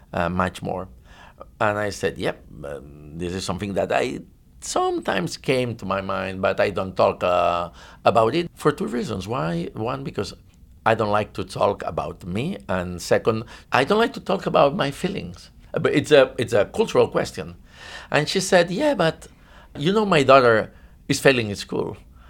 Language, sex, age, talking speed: English, male, 60-79, 185 wpm